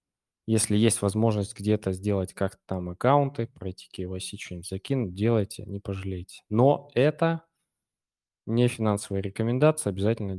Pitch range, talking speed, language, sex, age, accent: 95-115 Hz, 120 wpm, Russian, male, 20-39, native